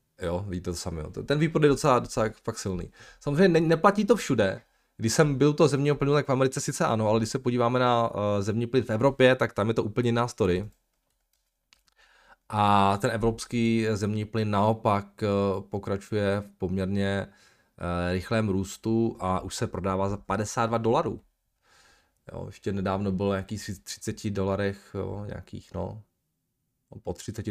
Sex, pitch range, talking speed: male, 100-120 Hz, 155 wpm